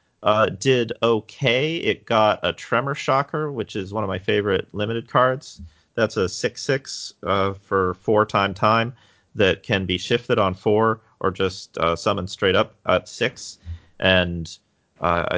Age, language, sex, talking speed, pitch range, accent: 30-49, English, male, 155 wpm, 85-110 Hz, American